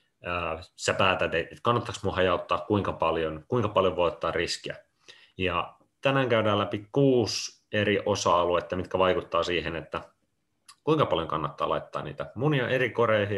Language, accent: Finnish, native